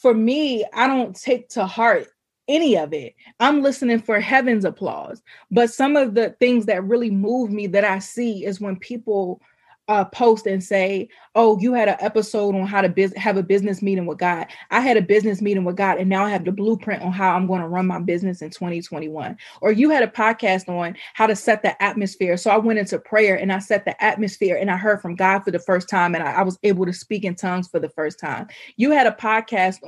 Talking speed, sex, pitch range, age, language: 235 wpm, female, 195-235 Hz, 20-39, English